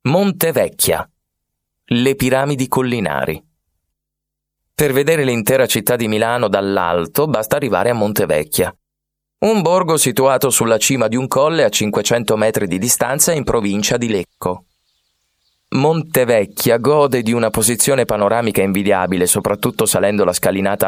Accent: native